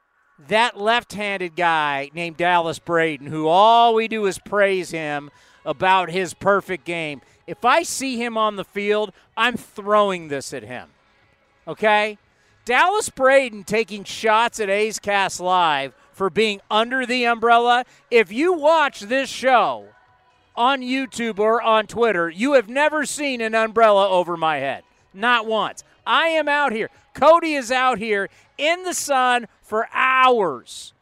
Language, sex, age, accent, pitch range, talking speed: English, male, 40-59, American, 200-250 Hz, 150 wpm